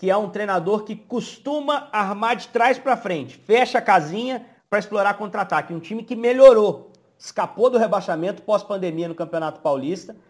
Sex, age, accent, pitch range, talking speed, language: male, 40-59, Brazilian, 180-225 Hz, 165 wpm, Portuguese